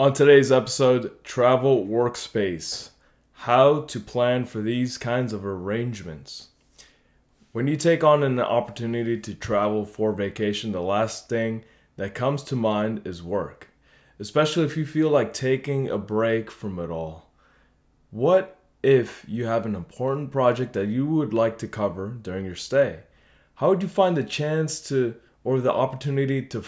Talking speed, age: 155 wpm, 20-39